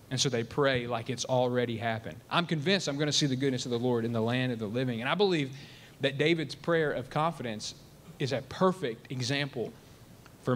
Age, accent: 30-49, American